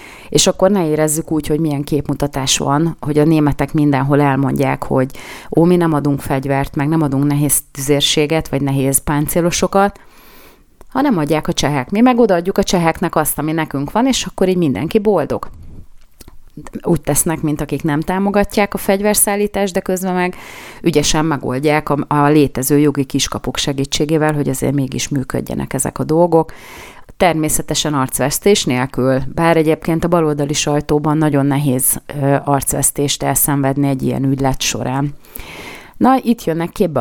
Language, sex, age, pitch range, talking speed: Hungarian, female, 30-49, 140-170 Hz, 150 wpm